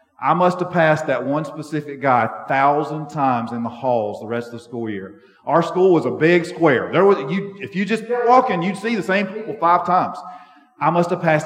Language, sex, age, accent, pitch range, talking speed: English, male, 40-59, American, 145-180 Hz, 230 wpm